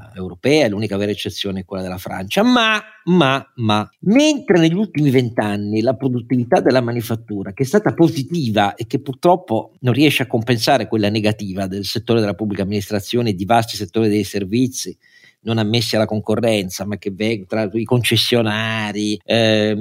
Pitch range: 105-125 Hz